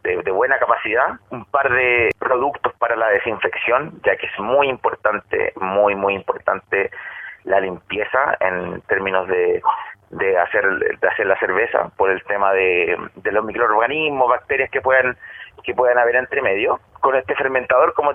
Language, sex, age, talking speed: Spanish, male, 30-49, 165 wpm